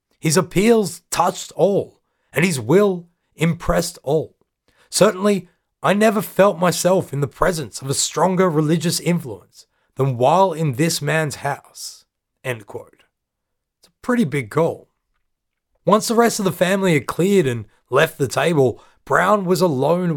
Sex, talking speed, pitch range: male, 150 wpm, 150-190 Hz